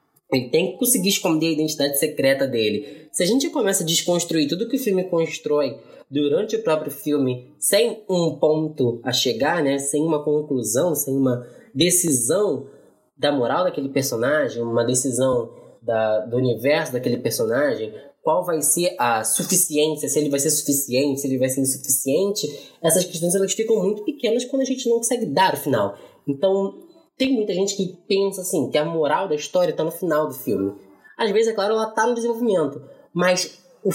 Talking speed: 180 wpm